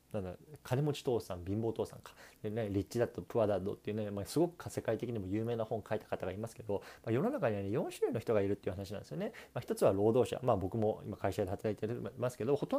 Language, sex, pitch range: Japanese, male, 100-145 Hz